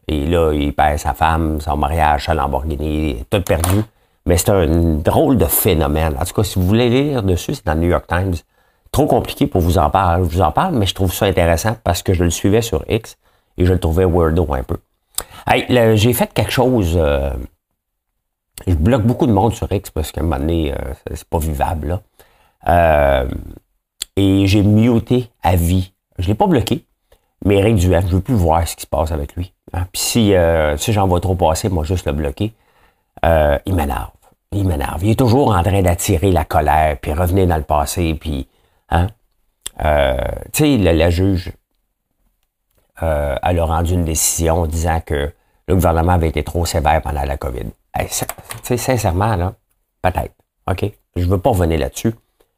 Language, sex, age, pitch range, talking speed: English, male, 50-69, 80-100 Hz, 205 wpm